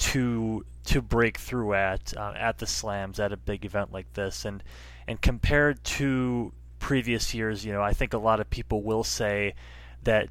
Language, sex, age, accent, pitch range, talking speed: English, male, 20-39, American, 100-125 Hz, 185 wpm